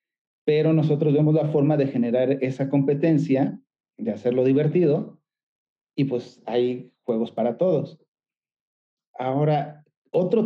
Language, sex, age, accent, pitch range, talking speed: Spanish, male, 40-59, Mexican, 135-160 Hz, 115 wpm